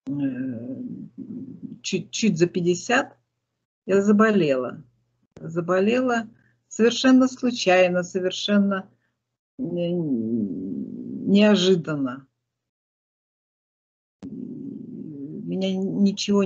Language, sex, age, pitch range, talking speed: Russian, female, 50-69, 155-210 Hz, 45 wpm